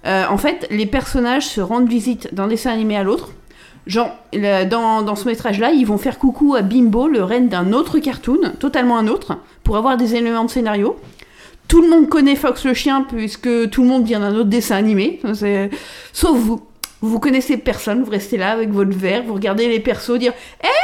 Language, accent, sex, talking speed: French, French, female, 210 wpm